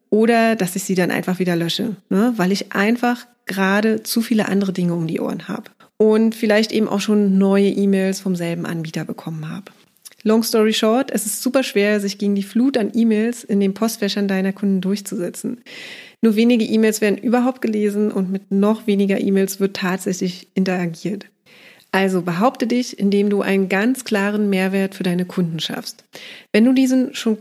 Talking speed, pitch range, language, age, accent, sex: 180 wpm, 190-225 Hz, German, 30-49, German, female